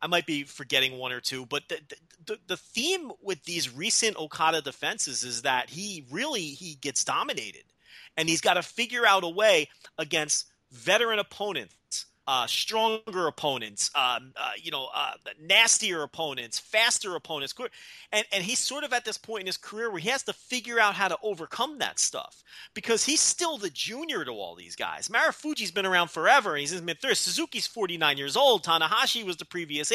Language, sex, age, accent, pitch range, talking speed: English, male, 30-49, American, 160-235 Hz, 190 wpm